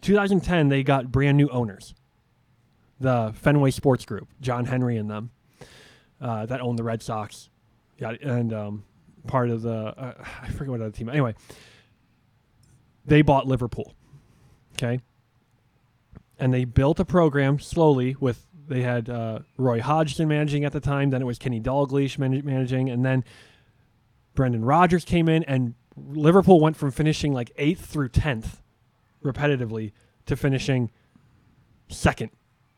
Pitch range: 115-140 Hz